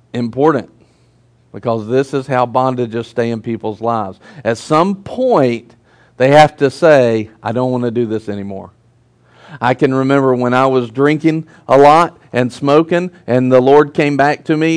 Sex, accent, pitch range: male, American, 120-150 Hz